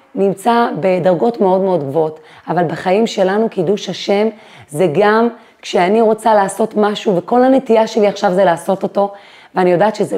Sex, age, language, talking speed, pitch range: female, 30-49, Hebrew, 155 wpm, 180-220 Hz